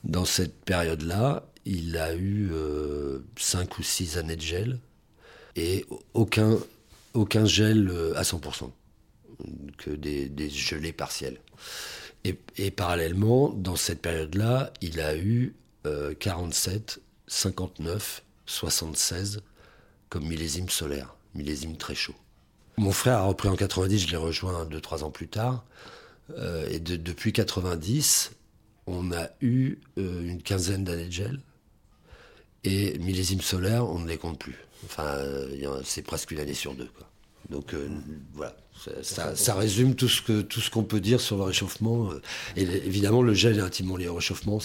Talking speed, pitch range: 155 wpm, 80-105 Hz